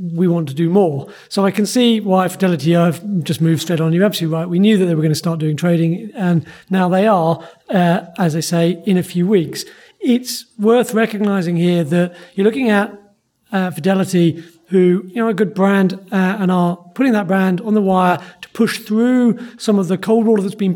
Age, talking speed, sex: 40-59, 220 wpm, male